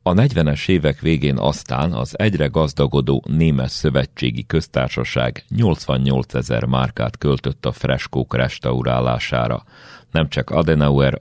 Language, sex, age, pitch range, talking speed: Hungarian, male, 40-59, 65-75 Hz, 110 wpm